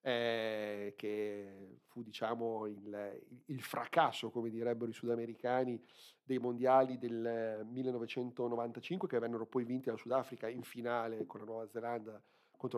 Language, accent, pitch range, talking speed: Italian, native, 110-130 Hz, 135 wpm